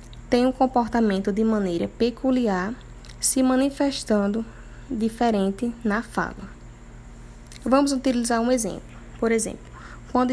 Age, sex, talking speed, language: 10-29, female, 105 wpm, Portuguese